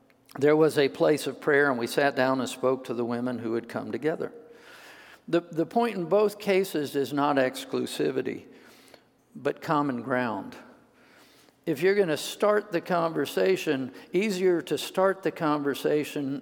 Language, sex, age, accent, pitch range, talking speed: English, male, 50-69, American, 125-155 Hz, 155 wpm